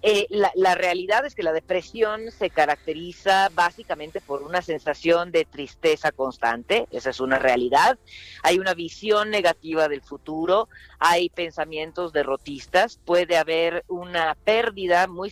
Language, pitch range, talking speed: Spanish, 150-195 Hz, 135 wpm